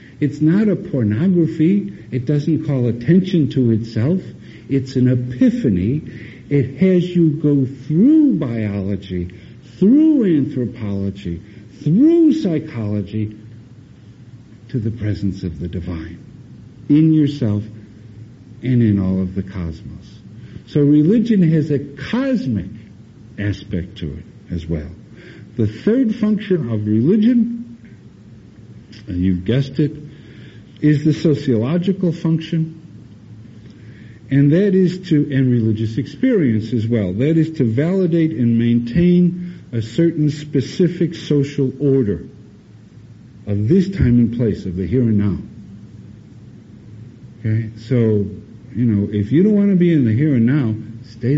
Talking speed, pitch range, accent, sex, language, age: 125 wpm, 110-155 Hz, American, male, English, 60-79